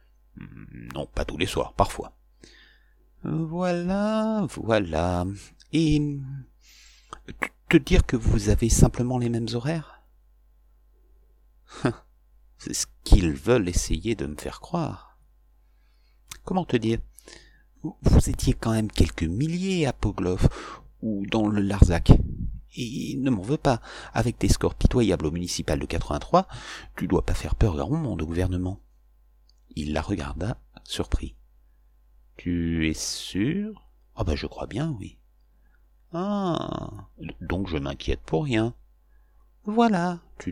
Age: 50-69